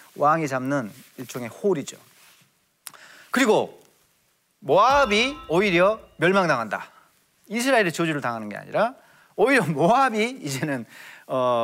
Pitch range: 135-195 Hz